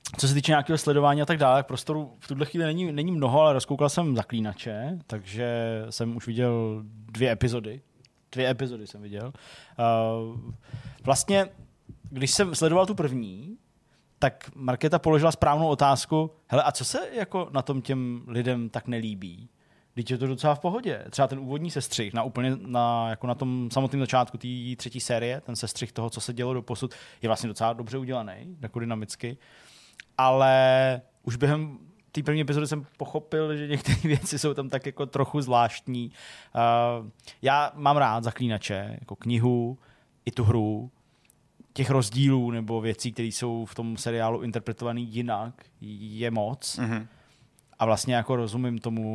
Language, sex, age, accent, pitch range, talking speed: Czech, male, 20-39, native, 115-140 Hz, 160 wpm